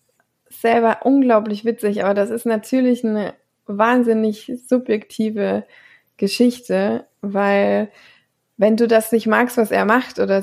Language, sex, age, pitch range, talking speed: German, female, 20-39, 205-245 Hz, 120 wpm